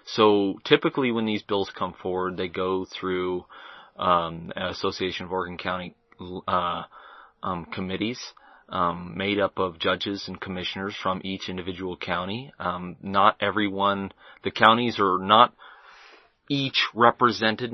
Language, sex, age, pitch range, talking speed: English, male, 30-49, 90-105 Hz, 130 wpm